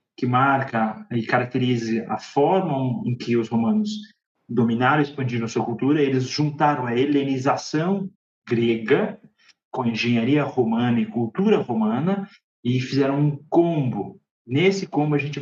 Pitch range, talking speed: 120-160 Hz, 140 wpm